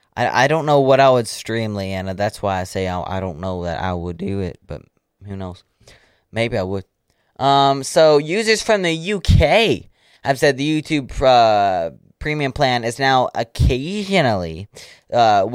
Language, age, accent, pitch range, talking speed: English, 20-39, American, 100-145 Hz, 165 wpm